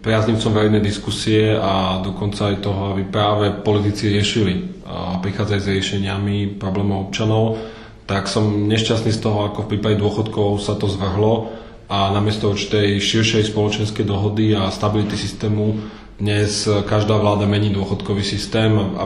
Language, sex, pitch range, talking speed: Slovak, male, 100-110 Hz, 145 wpm